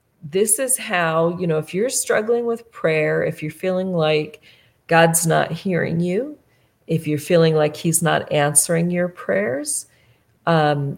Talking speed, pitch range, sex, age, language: 155 wpm, 155-185 Hz, female, 40-59, English